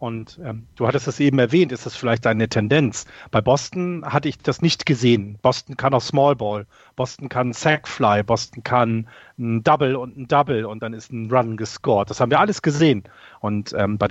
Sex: male